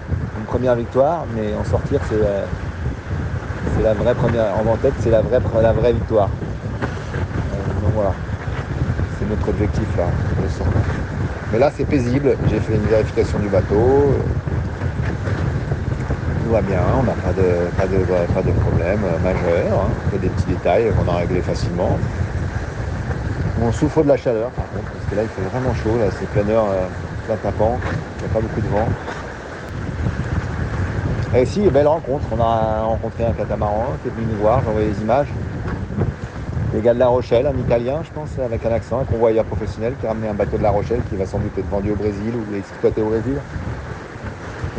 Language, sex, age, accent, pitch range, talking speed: French, male, 40-59, French, 100-125 Hz, 190 wpm